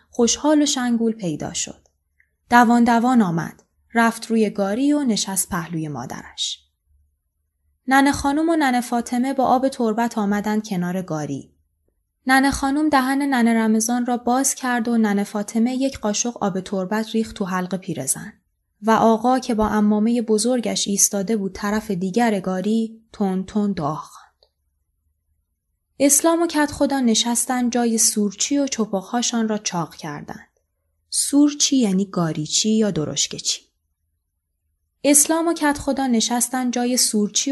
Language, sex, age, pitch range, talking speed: Persian, female, 20-39, 165-245 Hz, 130 wpm